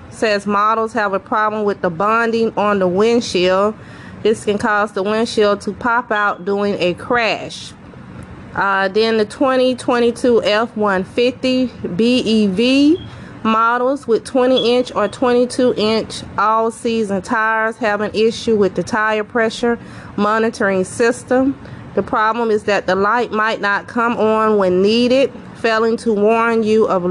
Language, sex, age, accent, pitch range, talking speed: English, female, 30-49, American, 205-235 Hz, 140 wpm